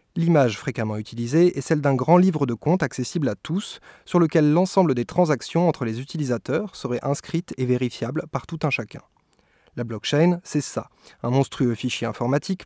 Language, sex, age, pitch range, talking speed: French, male, 30-49, 120-165 Hz, 175 wpm